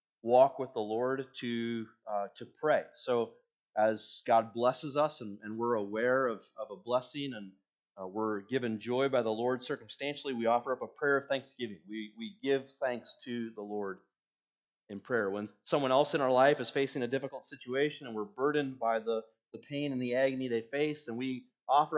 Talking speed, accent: 195 wpm, American